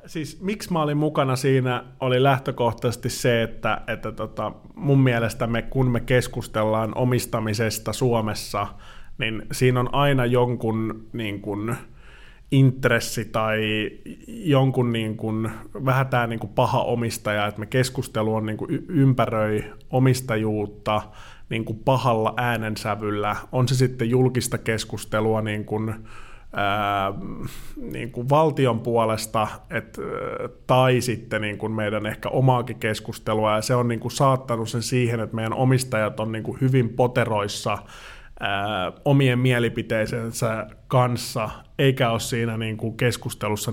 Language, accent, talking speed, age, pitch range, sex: Finnish, native, 130 wpm, 30-49, 110-125 Hz, male